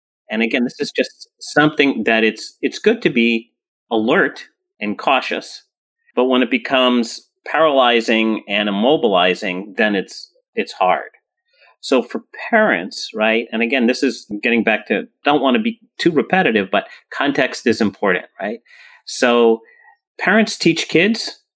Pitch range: 110-175 Hz